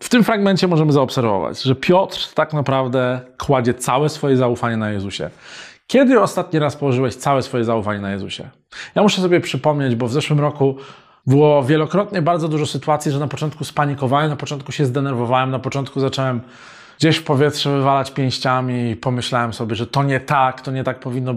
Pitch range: 125-150 Hz